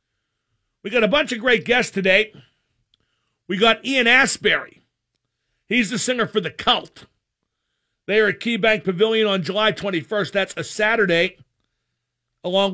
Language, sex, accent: English, male, American